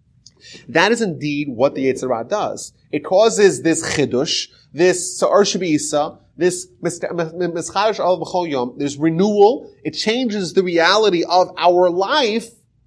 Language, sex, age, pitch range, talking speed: English, male, 30-49, 135-195 Hz, 115 wpm